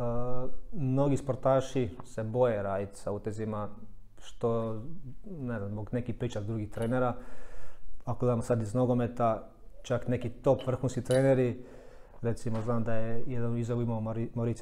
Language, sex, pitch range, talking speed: Croatian, male, 110-125 Hz, 135 wpm